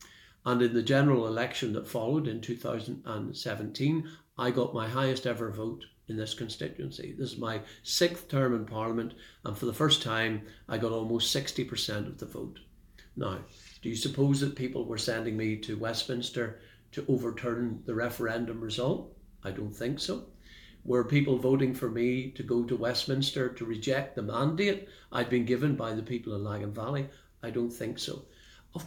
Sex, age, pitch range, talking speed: male, 50-69, 110-135 Hz, 175 wpm